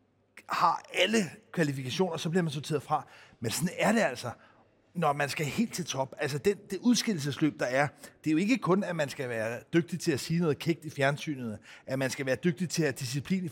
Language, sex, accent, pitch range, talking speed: Danish, male, native, 150-200 Hz, 230 wpm